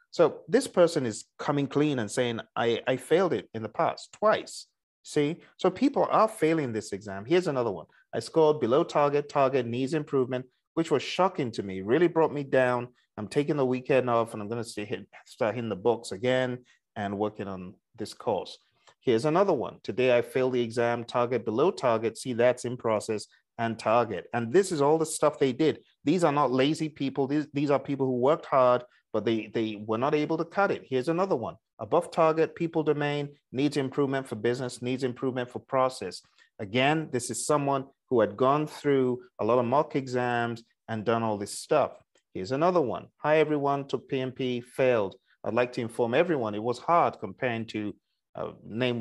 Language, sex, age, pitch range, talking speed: English, male, 30-49, 115-145 Hz, 195 wpm